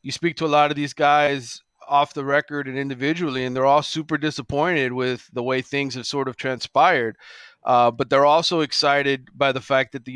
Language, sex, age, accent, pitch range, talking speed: English, male, 30-49, American, 130-150 Hz, 215 wpm